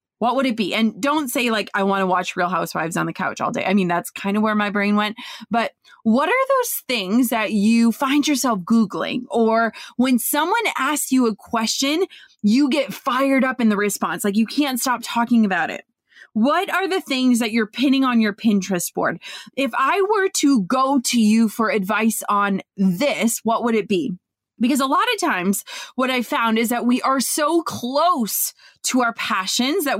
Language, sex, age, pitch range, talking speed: English, female, 20-39, 220-285 Hz, 205 wpm